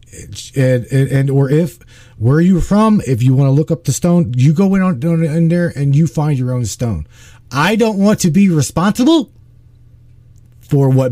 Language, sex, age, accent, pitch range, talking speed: English, male, 40-59, American, 115-160 Hz, 200 wpm